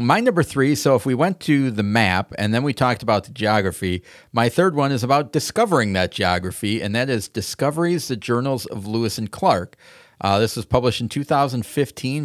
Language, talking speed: English, 200 wpm